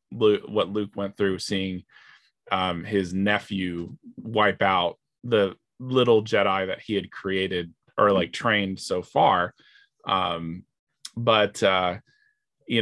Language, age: English, 20-39